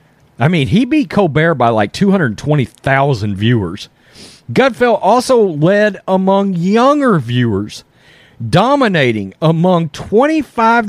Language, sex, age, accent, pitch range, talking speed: English, male, 40-59, American, 145-210 Hz, 100 wpm